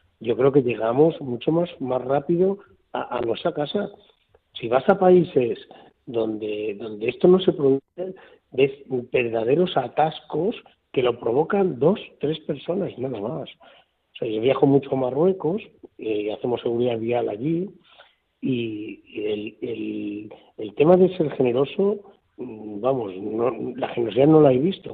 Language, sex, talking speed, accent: Spanish, male, 145 wpm, Spanish